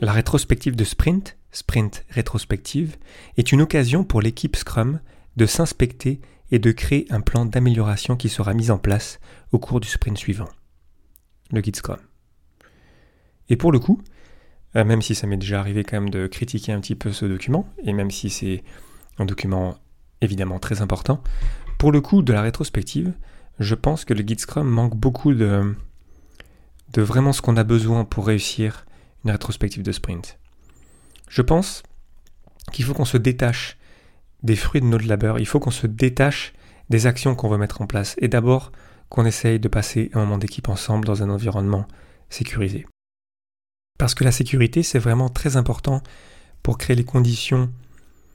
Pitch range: 100-125 Hz